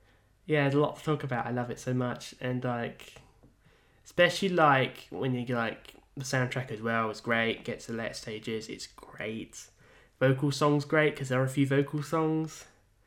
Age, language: 10-29, English